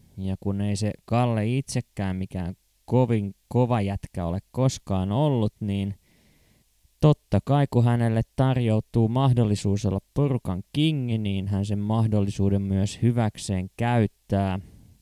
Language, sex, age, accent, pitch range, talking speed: Finnish, male, 20-39, native, 100-125 Hz, 120 wpm